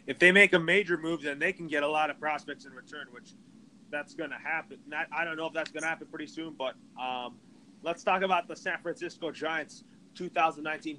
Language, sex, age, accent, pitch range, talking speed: English, male, 30-49, American, 155-235 Hz, 225 wpm